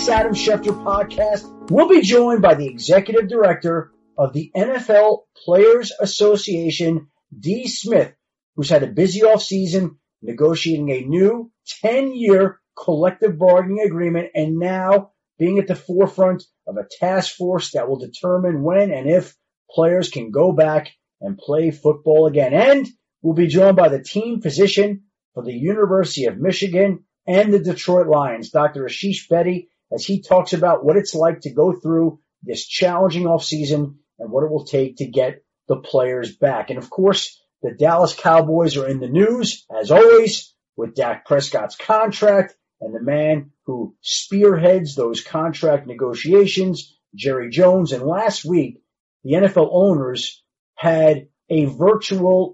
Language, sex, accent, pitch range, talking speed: English, male, American, 155-200 Hz, 150 wpm